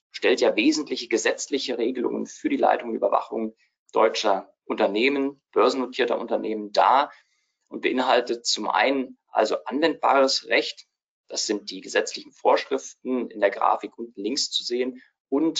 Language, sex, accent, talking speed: German, male, German, 135 wpm